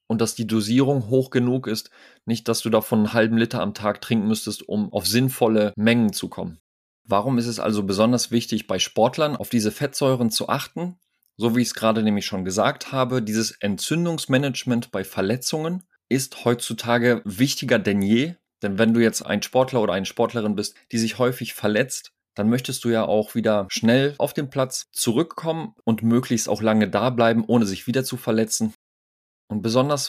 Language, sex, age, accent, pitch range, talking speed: German, male, 30-49, German, 105-125 Hz, 185 wpm